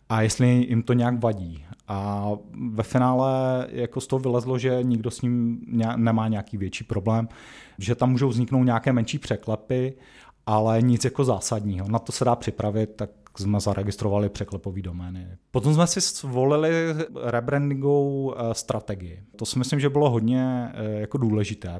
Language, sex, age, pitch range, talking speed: Czech, male, 30-49, 105-125 Hz, 155 wpm